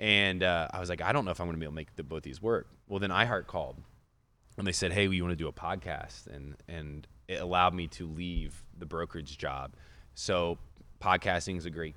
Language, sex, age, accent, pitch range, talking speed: English, male, 20-39, American, 90-115 Hz, 250 wpm